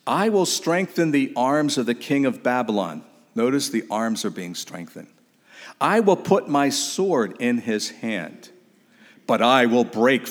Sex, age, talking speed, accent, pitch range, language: male, 50-69, 165 wpm, American, 115-185 Hz, English